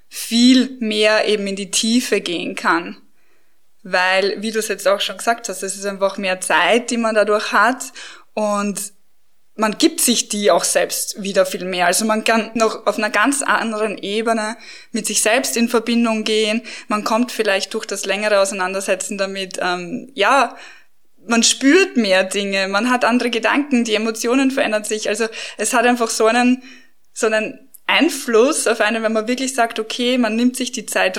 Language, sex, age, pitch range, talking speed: German, female, 20-39, 200-245 Hz, 180 wpm